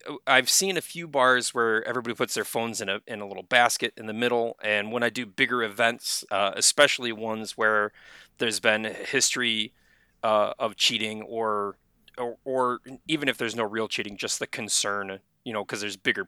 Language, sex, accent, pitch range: English, male, American, 105-125 Hz